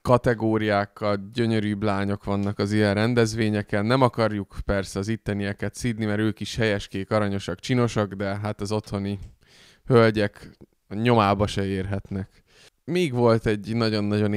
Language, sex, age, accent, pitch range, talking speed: English, male, 20-39, Finnish, 105-120 Hz, 130 wpm